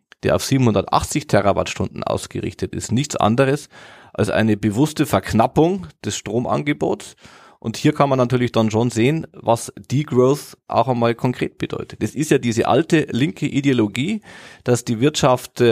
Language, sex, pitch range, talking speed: German, male, 115-150 Hz, 145 wpm